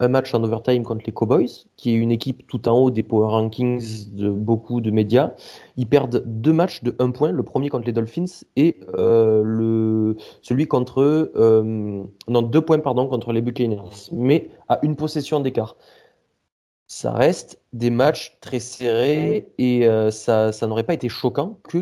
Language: French